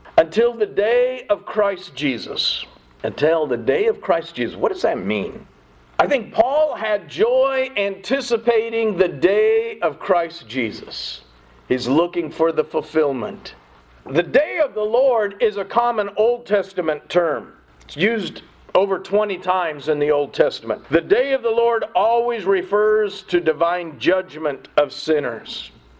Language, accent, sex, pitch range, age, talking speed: English, American, male, 165-260 Hz, 50-69, 150 wpm